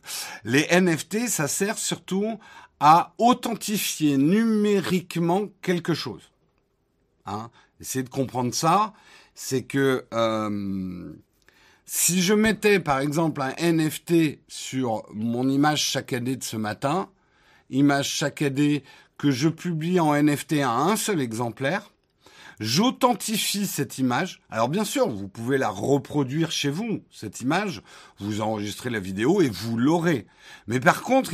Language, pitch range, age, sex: French, 120-180 Hz, 50-69, male